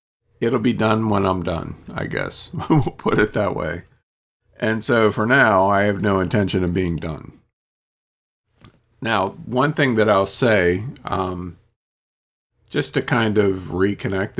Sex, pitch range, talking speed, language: male, 90-110 Hz, 150 wpm, English